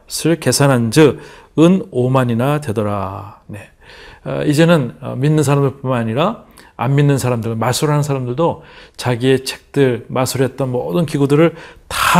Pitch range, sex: 125-160 Hz, male